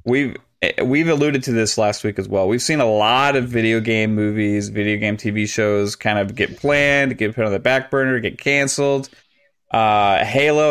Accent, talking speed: American, 195 wpm